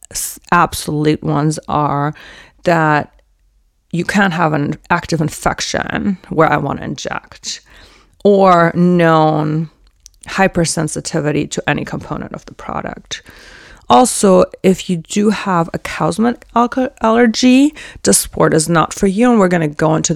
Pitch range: 160-200 Hz